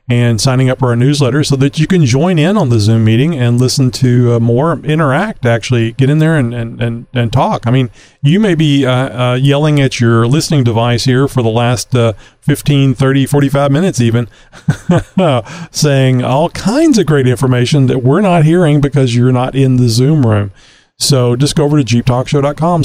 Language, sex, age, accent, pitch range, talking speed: English, male, 40-59, American, 120-145 Hz, 200 wpm